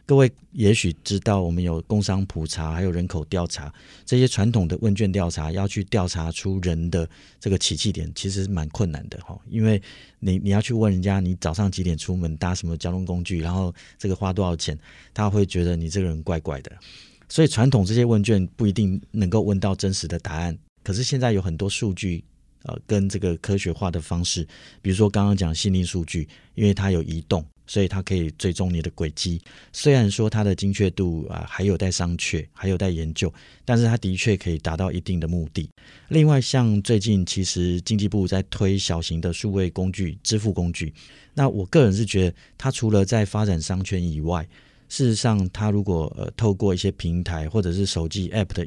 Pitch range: 85-105 Hz